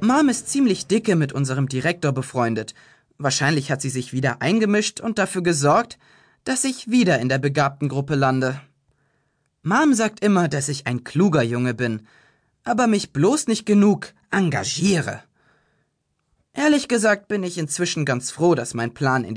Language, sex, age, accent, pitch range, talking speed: German, male, 20-39, German, 135-205 Hz, 160 wpm